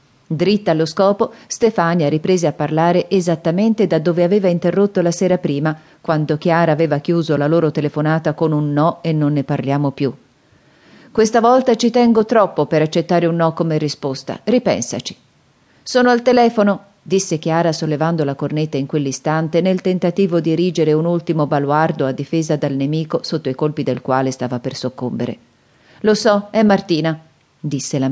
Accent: native